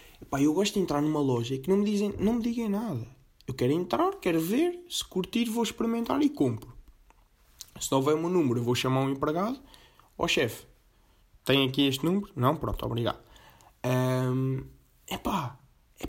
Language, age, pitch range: Portuguese, 20-39, 130-185 Hz